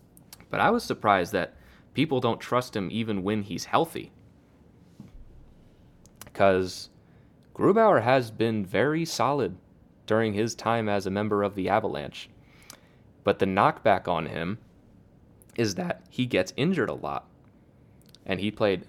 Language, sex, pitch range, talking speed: English, male, 95-115 Hz, 135 wpm